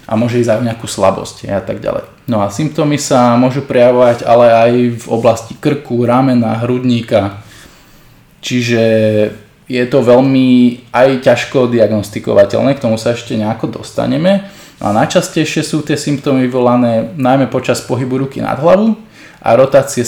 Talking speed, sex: 150 wpm, male